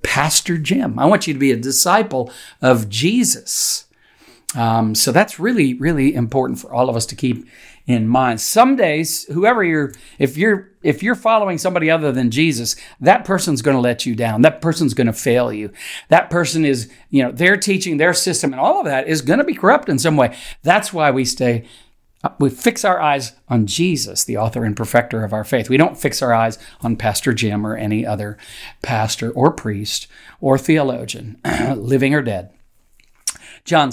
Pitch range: 115-155 Hz